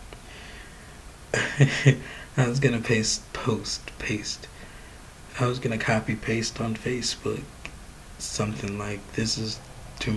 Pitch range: 105-120 Hz